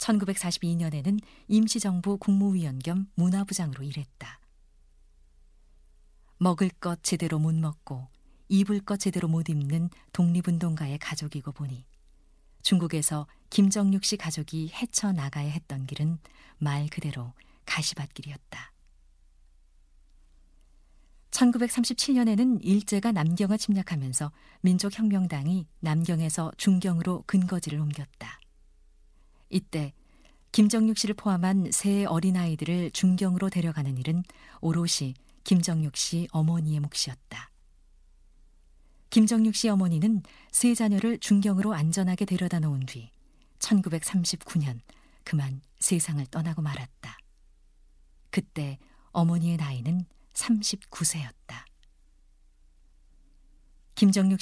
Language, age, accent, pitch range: Korean, 40-59, native, 130-190 Hz